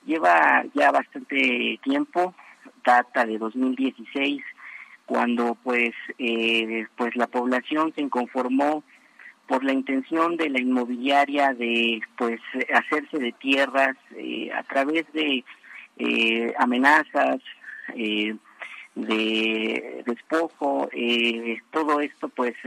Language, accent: Spanish, Mexican